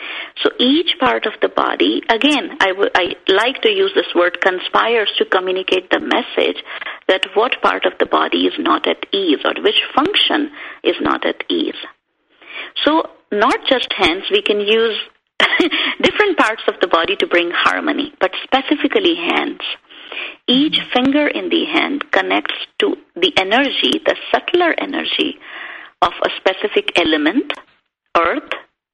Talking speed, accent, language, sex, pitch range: 145 wpm, Indian, English, female, 260-360 Hz